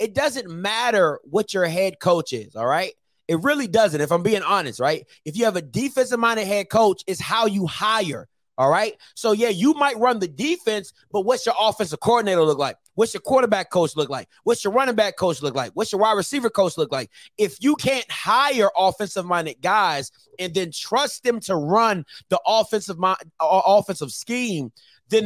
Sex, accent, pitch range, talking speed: male, American, 195-260 Hz, 195 wpm